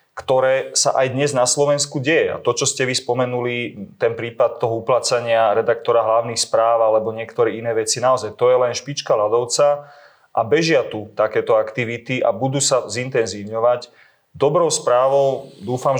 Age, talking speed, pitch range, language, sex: 30-49, 155 wpm, 115-135 Hz, Slovak, male